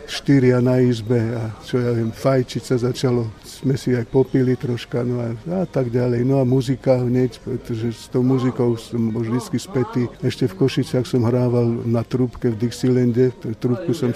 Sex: male